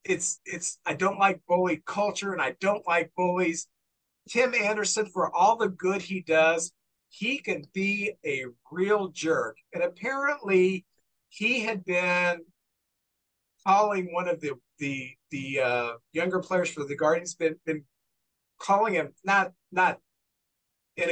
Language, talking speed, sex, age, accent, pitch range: English, 140 wpm, male, 50-69, American, 165-220 Hz